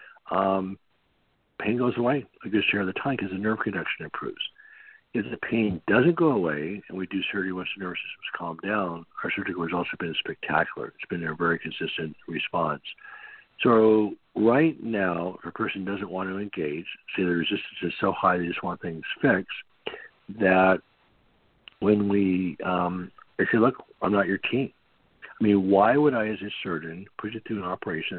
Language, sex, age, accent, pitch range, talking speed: English, male, 60-79, American, 90-110 Hz, 185 wpm